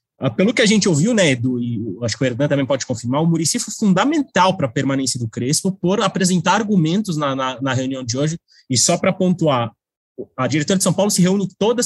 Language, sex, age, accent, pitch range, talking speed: Portuguese, male, 20-39, Brazilian, 140-200 Hz, 230 wpm